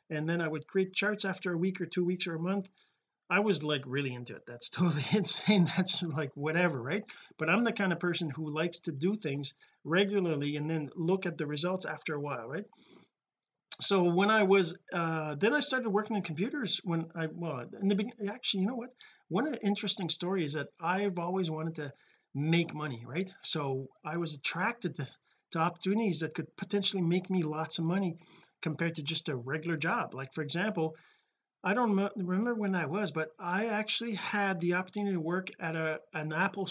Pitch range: 155-200 Hz